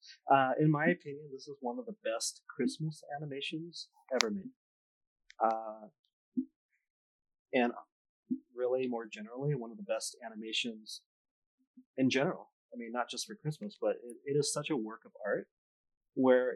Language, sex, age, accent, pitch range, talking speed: English, male, 30-49, American, 120-160 Hz, 150 wpm